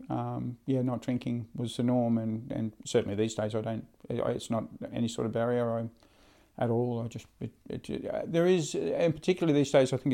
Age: 50-69